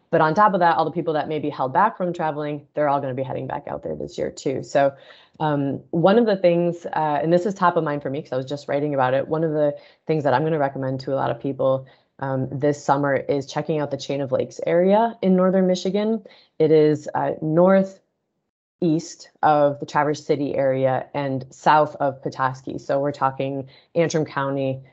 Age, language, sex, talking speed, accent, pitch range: 20-39, English, female, 230 wpm, American, 135-160 Hz